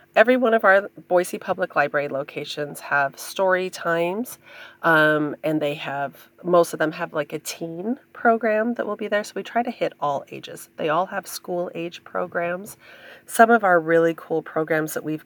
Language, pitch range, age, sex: English, 155-205 Hz, 30-49, female